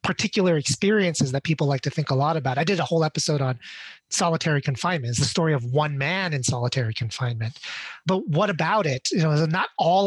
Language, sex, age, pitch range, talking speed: English, male, 30-49, 140-180 Hz, 210 wpm